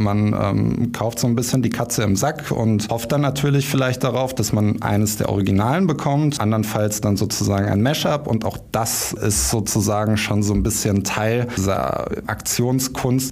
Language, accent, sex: German, German, male